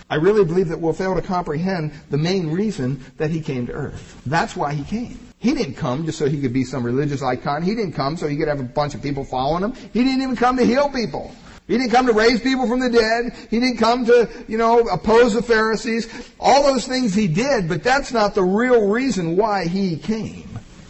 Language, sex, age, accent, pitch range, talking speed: English, male, 50-69, American, 160-225 Hz, 240 wpm